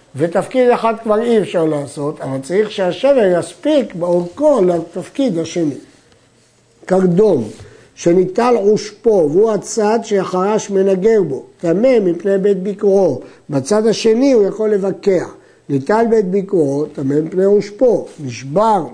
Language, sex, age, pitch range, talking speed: Hebrew, male, 60-79, 160-215 Hz, 115 wpm